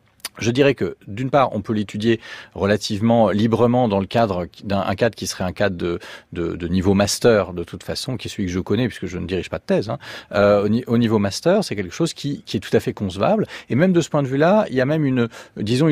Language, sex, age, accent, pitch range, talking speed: French, male, 40-59, French, 100-130 Hz, 260 wpm